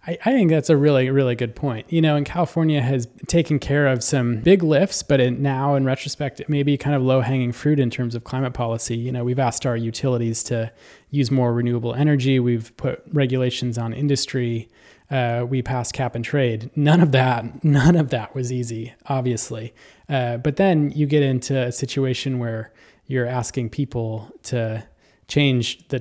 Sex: male